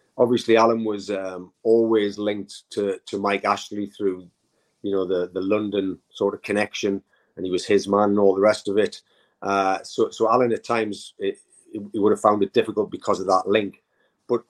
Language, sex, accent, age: English, male, British, 30-49